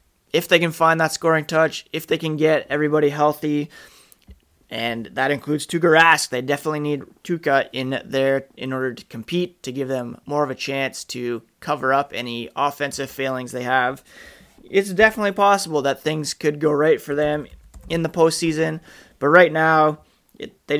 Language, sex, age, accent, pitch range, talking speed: English, male, 20-39, American, 125-150 Hz, 175 wpm